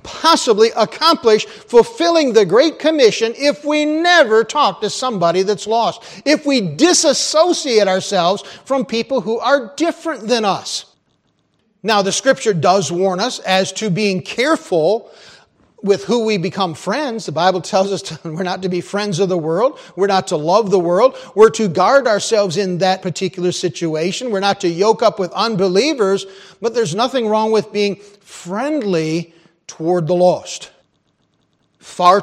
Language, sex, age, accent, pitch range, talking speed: English, male, 40-59, American, 170-230 Hz, 155 wpm